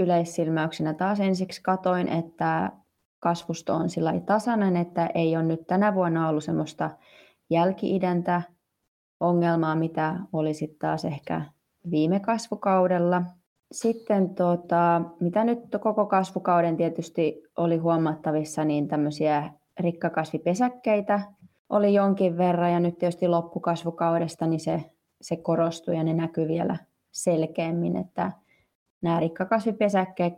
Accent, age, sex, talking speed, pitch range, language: native, 20-39, female, 115 wpm, 165-190 Hz, Finnish